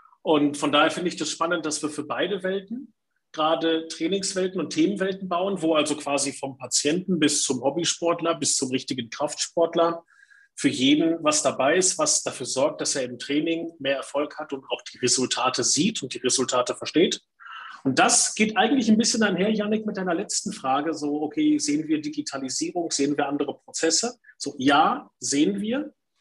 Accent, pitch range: German, 145-195 Hz